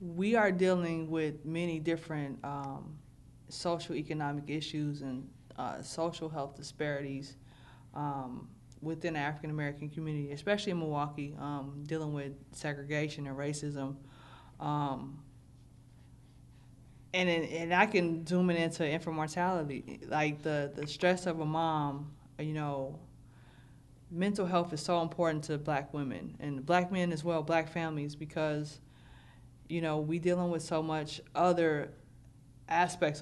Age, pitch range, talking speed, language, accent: 20-39, 140-170 Hz, 135 wpm, English, American